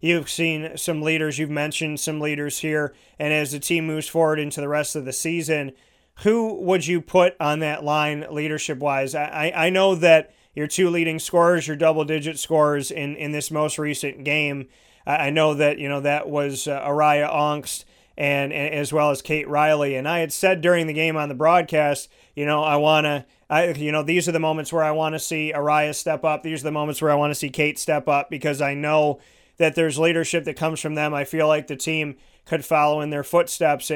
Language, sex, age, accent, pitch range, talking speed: English, male, 30-49, American, 145-160 Hz, 220 wpm